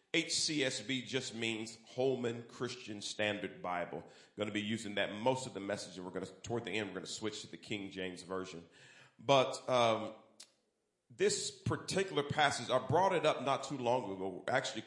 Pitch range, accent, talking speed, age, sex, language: 100-130 Hz, American, 185 wpm, 40-59, male, English